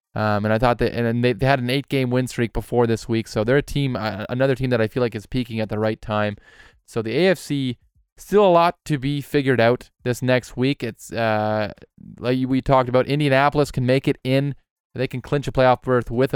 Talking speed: 235 wpm